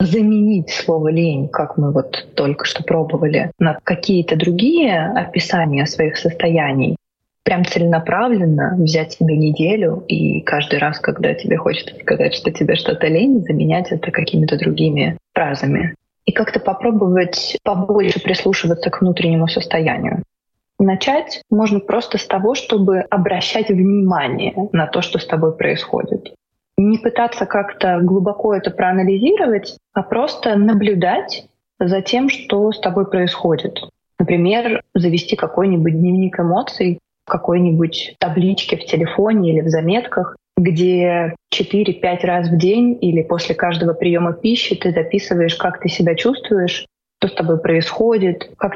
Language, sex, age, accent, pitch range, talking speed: Russian, female, 20-39, native, 165-205 Hz, 130 wpm